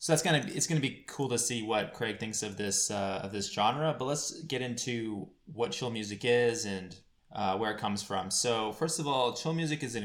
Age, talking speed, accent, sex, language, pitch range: 20-39, 240 wpm, American, male, English, 100-125 Hz